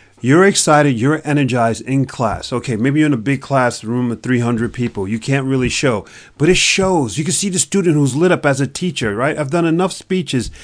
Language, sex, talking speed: English, male, 225 wpm